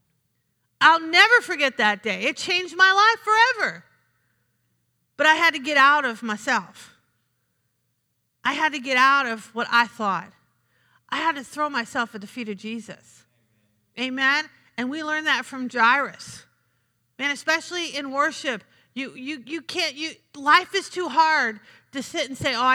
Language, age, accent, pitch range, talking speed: English, 40-59, American, 185-265 Hz, 165 wpm